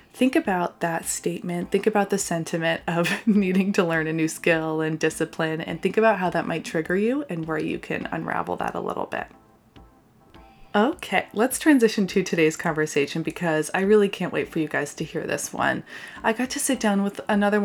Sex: female